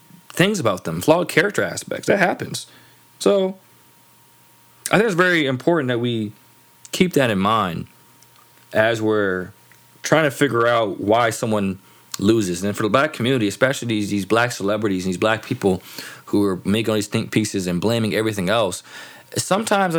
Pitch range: 105-145 Hz